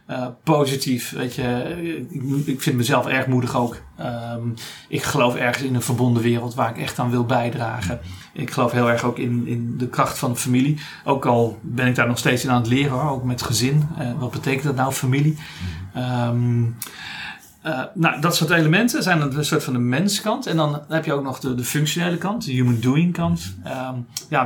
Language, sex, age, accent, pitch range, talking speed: Dutch, male, 30-49, Dutch, 120-145 Hz, 200 wpm